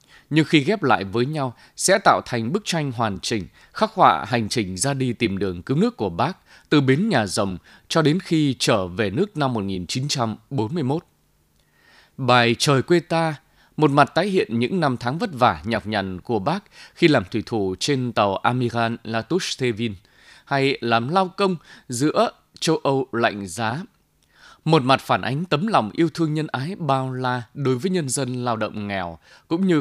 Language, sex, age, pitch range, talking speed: Vietnamese, male, 20-39, 115-155 Hz, 185 wpm